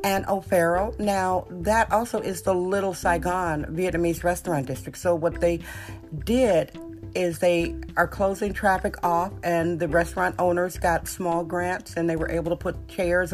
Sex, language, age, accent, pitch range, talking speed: female, English, 50-69, American, 165-195 Hz, 160 wpm